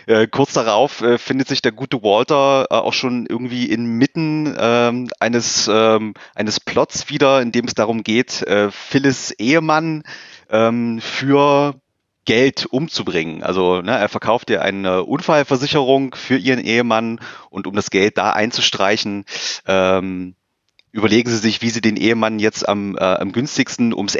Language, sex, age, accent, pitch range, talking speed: German, male, 30-49, German, 110-135 Hz, 145 wpm